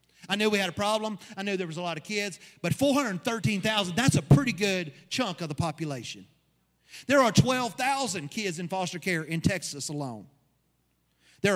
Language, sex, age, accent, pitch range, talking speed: English, male, 40-59, American, 135-200 Hz, 180 wpm